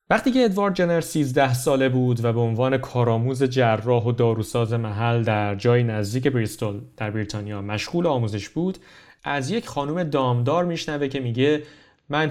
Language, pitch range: Persian, 120-155 Hz